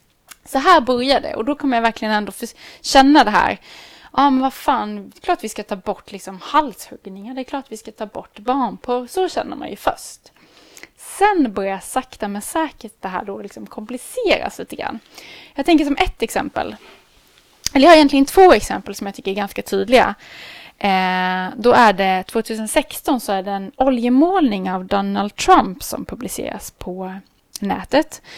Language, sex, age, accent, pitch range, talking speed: Swedish, female, 20-39, native, 200-275 Hz, 190 wpm